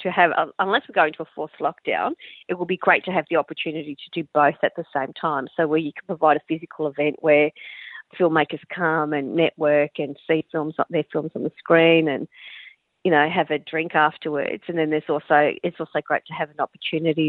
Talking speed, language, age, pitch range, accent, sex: 220 wpm, English, 40-59, 150-170 Hz, Australian, female